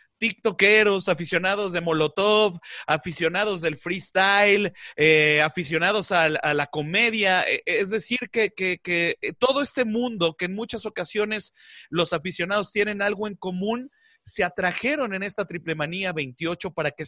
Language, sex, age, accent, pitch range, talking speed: Spanish, male, 30-49, Mexican, 160-215 Hz, 135 wpm